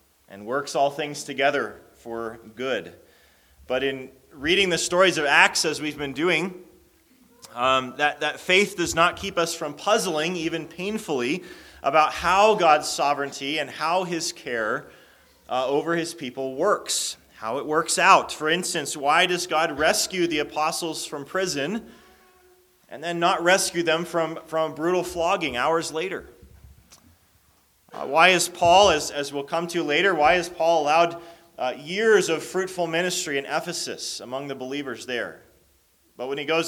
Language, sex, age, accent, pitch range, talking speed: English, male, 30-49, American, 135-170 Hz, 155 wpm